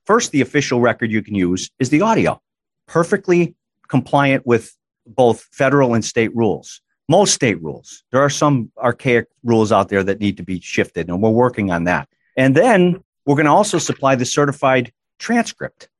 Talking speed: 180 wpm